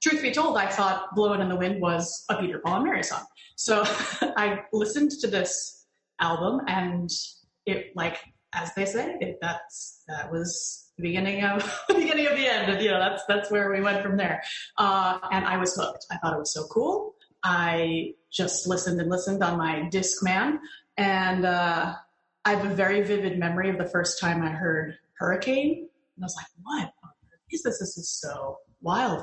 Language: English